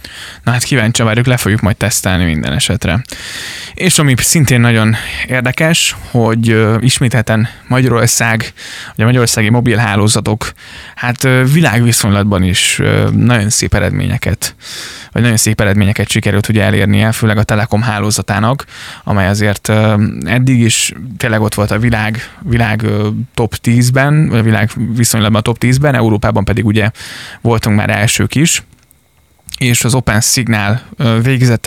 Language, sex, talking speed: Hungarian, male, 130 wpm